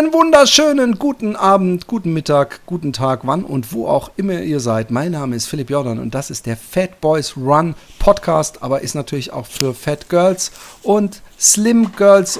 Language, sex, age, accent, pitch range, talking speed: German, male, 40-59, German, 130-185 Hz, 185 wpm